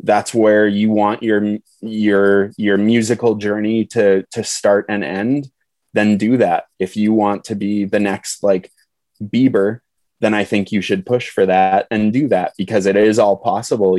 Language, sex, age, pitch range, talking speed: English, male, 20-39, 95-110 Hz, 180 wpm